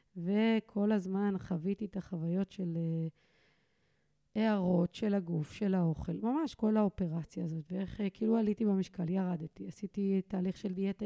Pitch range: 175-215 Hz